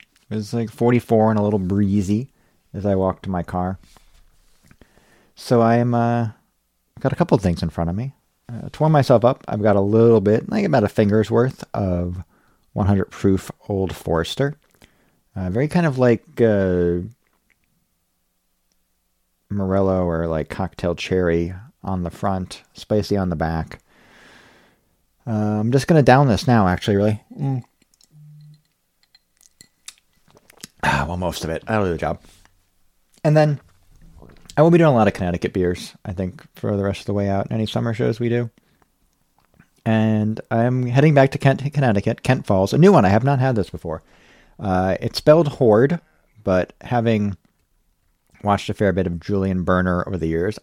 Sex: male